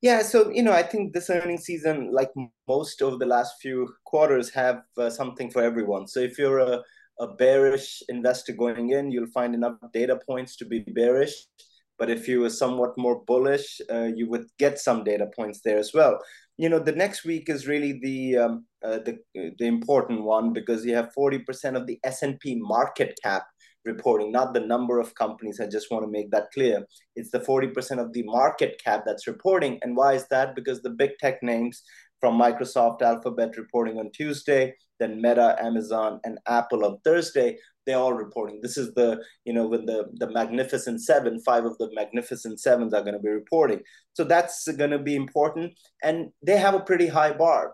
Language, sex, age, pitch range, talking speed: English, male, 20-39, 115-145 Hz, 195 wpm